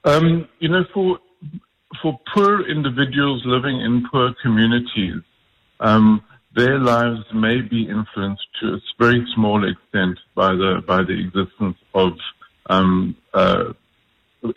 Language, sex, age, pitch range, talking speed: English, male, 50-69, 95-120 Hz, 125 wpm